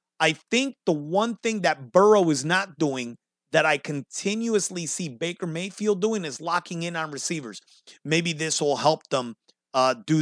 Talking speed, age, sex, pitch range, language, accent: 170 wpm, 30-49, male, 170-220 Hz, English, American